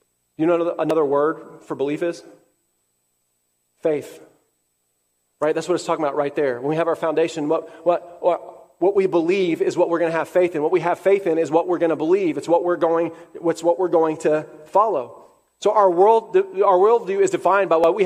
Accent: American